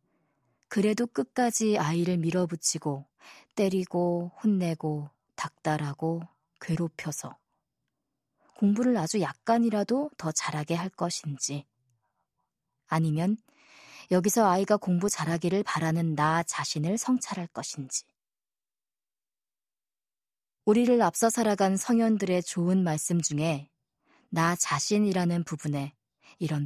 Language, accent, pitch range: Korean, native, 150-195 Hz